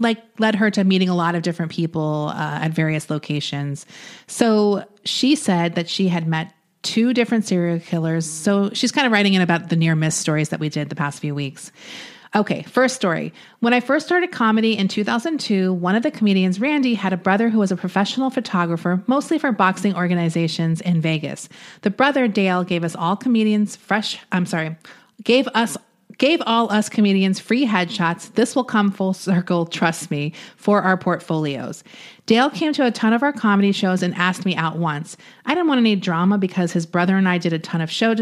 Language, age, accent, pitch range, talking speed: English, 30-49, American, 170-225 Hz, 205 wpm